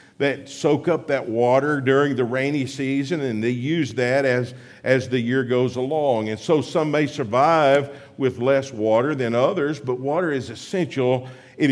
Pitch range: 110-140 Hz